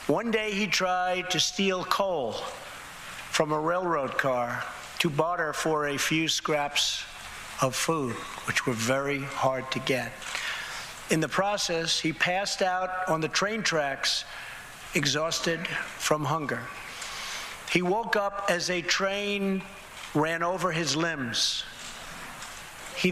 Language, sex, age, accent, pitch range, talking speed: English, male, 50-69, American, 150-185 Hz, 125 wpm